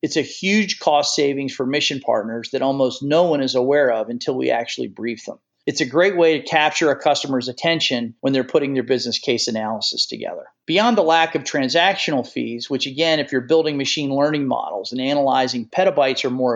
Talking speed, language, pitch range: 205 wpm, English, 130-160 Hz